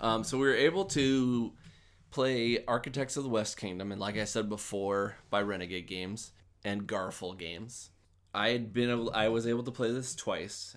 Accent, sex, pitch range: American, male, 95-110 Hz